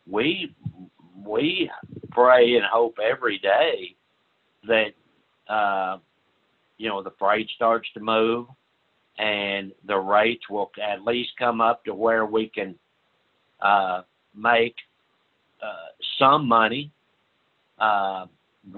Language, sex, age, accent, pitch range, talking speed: English, male, 60-79, American, 105-125 Hz, 110 wpm